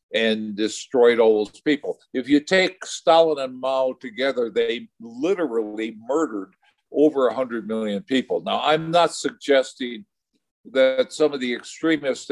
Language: English